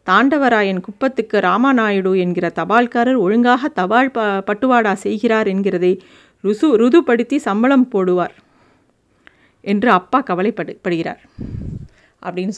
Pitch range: 205-265 Hz